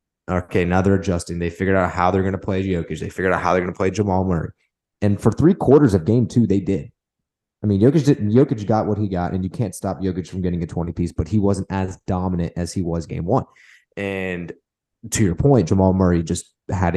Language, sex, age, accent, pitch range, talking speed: English, male, 20-39, American, 90-105 Hz, 240 wpm